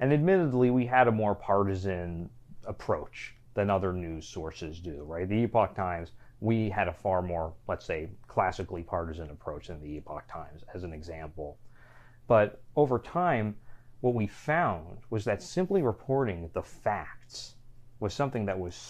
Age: 30-49